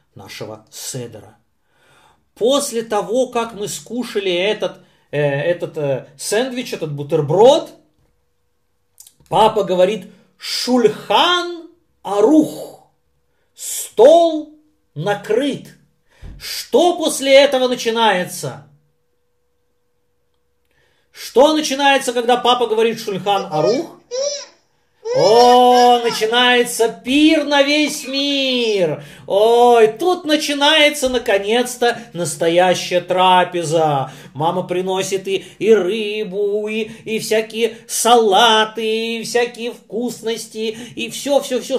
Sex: male